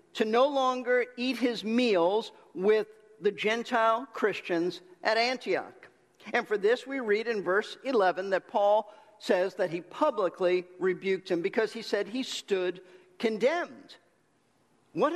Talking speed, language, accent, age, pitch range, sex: 140 wpm, English, American, 50-69, 180-245 Hz, male